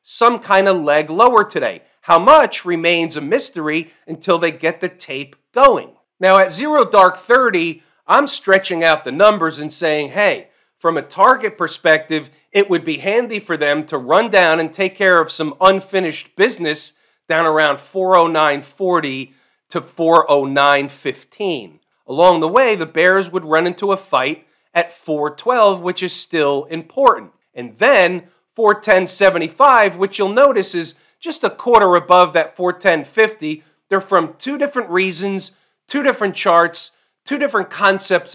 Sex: male